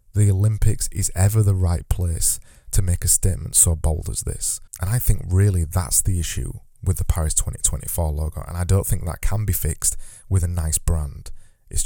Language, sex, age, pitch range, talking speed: English, male, 20-39, 85-105 Hz, 205 wpm